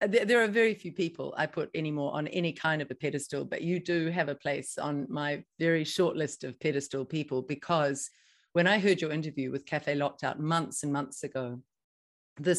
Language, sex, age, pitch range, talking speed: English, female, 50-69, 145-185 Hz, 205 wpm